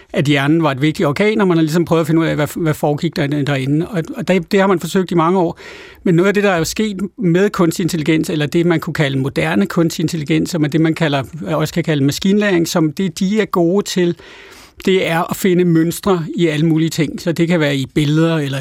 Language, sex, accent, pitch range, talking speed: Danish, male, native, 155-180 Hz, 240 wpm